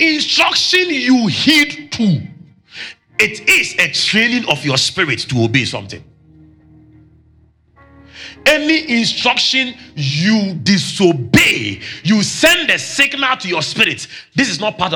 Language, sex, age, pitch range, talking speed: English, male, 40-59, 115-195 Hz, 115 wpm